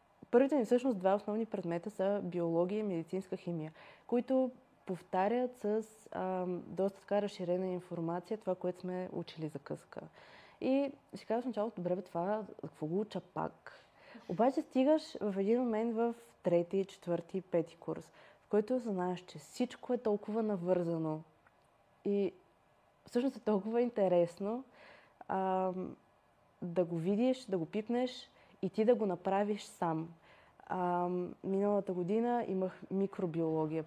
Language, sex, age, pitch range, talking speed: Bulgarian, female, 20-39, 180-220 Hz, 135 wpm